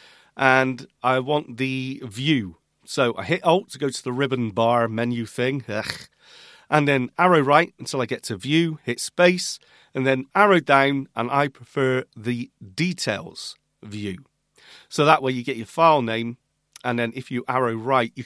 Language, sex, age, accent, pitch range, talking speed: English, male, 40-59, British, 115-145 Hz, 180 wpm